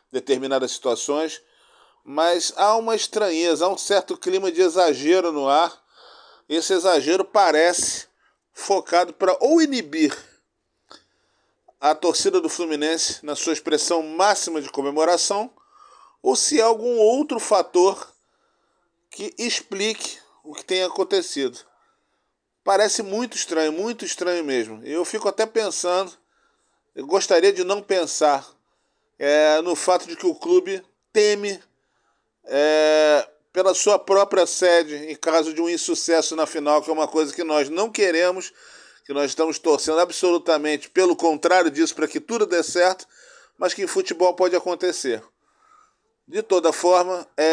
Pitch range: 155-215 Hz